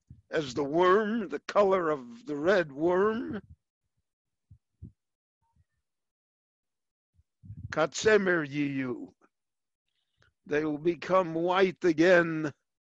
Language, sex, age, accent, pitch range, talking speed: English, male, 60-79, American, 150-200 Hz, 65 wpm